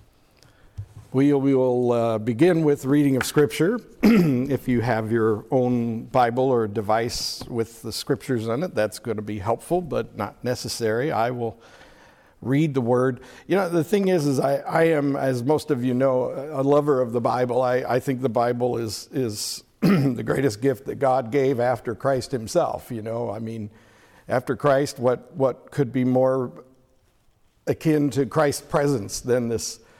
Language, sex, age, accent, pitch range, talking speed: English, male, 60-79, American, 110-135 Hz, 175 wpm